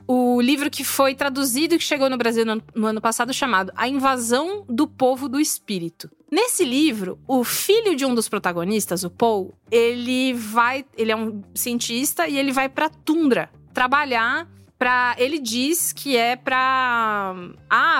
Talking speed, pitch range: 165 wpm, 215-300 Hz